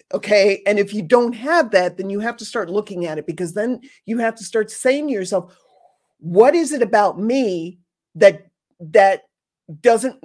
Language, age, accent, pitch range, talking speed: English, 50-69, American, 175-235 Hz, 185 wpm